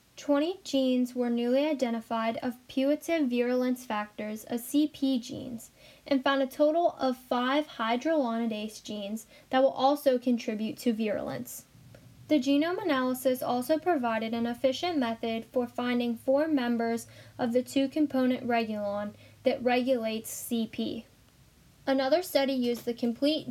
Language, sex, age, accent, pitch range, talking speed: English, female, 10-29, American, 230-270 Hz, 130 wpm